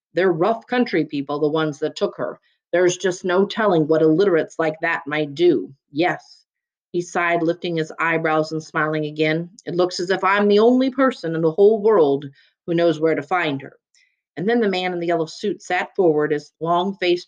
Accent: American